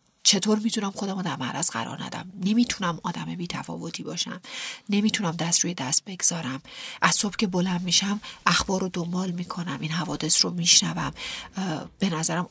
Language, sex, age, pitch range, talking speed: Persian, female, 40-59, 170-200 Hz, 150 wpm